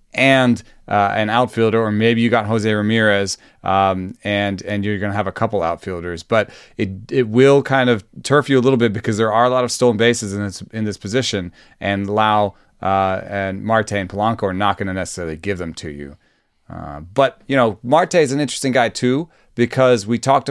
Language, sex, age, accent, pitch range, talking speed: English, male, 30-49, American, 100-120 Hz, 215 wpm